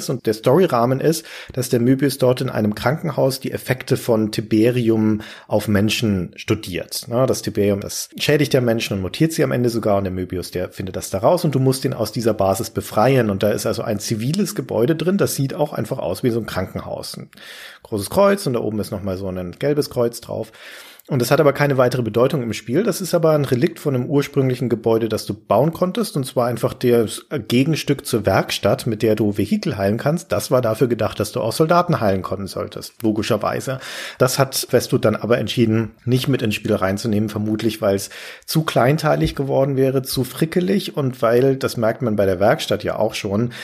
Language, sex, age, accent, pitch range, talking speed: German, male, 40-59, German, 105-140 Hz, 210 wpm